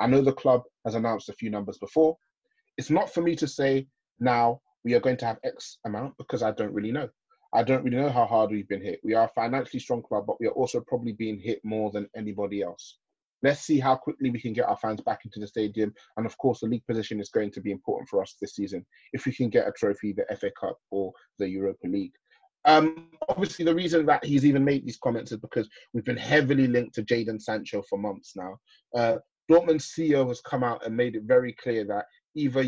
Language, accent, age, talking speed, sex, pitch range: English, British, 30-49, 240 wpm, male, 115-160 Hz